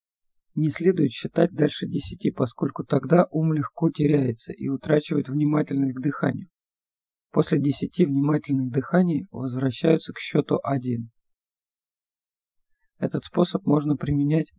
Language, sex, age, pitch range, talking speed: Russian, male, 50-69, 135-160 Hz, 110 wpm